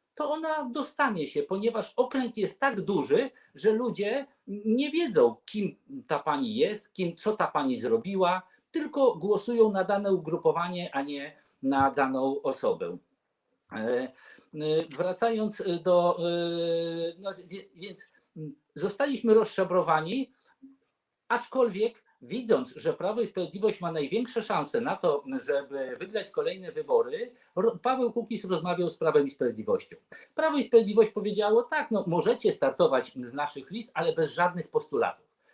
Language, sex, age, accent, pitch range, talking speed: Polish, male, 50-69, native, 170-275 Hz, 125 wpm